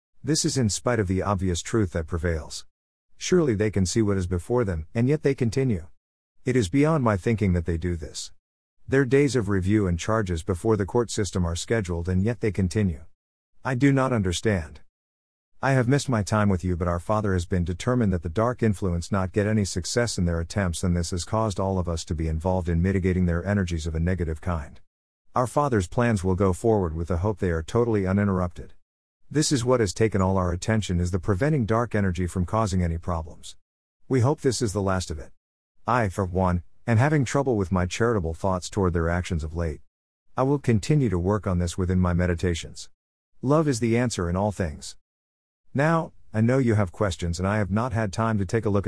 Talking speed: 220 wpm